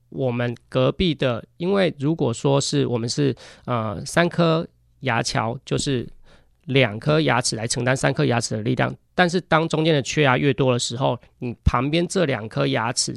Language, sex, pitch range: Chinese, male, 125-160 Hz